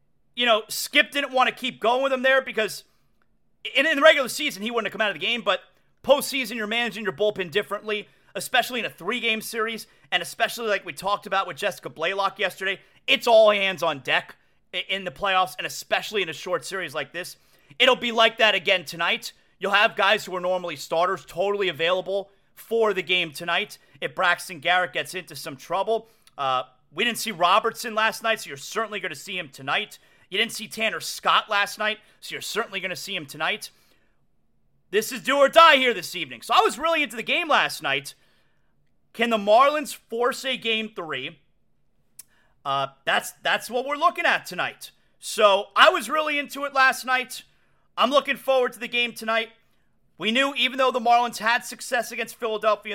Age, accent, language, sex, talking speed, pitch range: 30-49, American, English, male, 200 wpm, 185-240 Hz